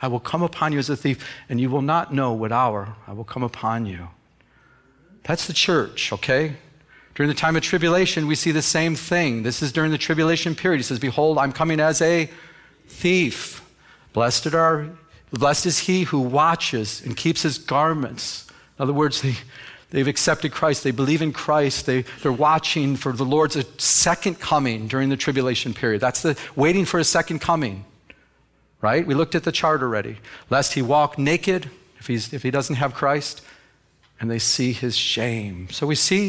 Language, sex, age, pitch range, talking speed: English, male, 40-59, 125-155 Hz, 190 wpm